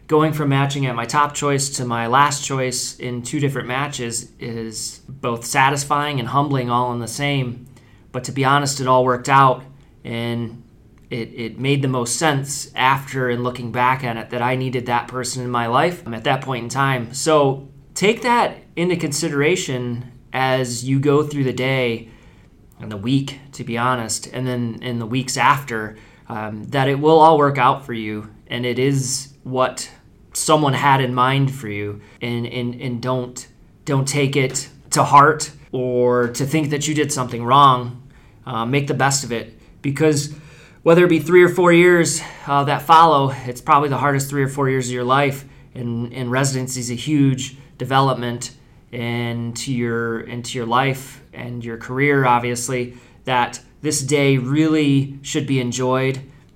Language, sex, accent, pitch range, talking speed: English, male, American, 120-140 Hz, 180 wpm